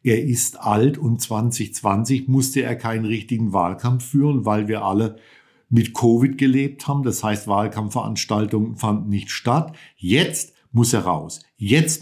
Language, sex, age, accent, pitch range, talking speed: German, male, 50-69, German, 105-130 Hz, 145 wpm